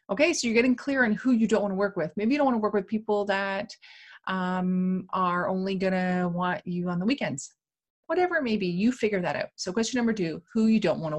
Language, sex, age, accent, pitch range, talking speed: English, female, 30-49, American, 180-230 Hz, 265 wpm